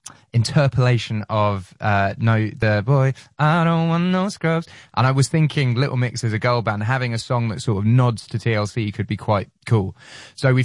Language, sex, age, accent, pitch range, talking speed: English, male, 20-39, British, 105-135 Hz, 205 wpm